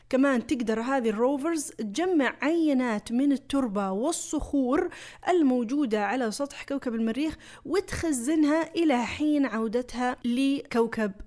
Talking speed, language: 100 wpm, Arabic